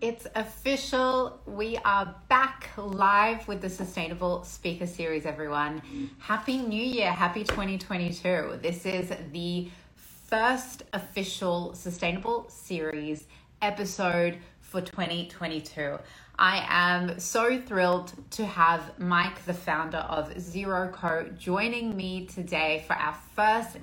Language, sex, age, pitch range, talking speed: English, female, 30-49, 165-205 Hz, 115 wpm